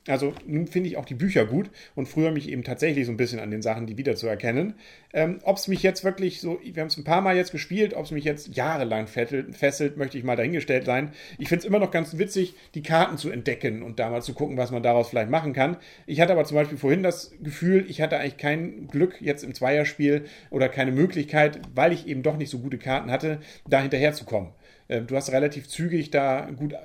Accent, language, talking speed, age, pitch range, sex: German, German, 235 wpm, 40-59, 130-175 Hz, male